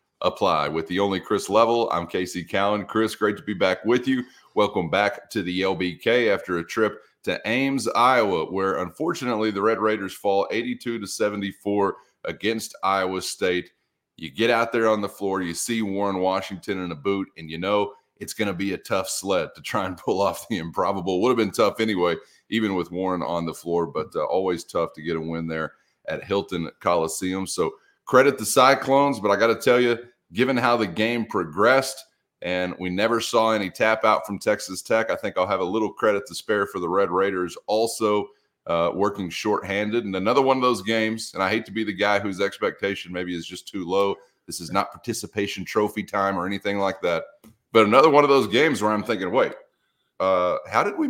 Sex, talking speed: male, 210 wpm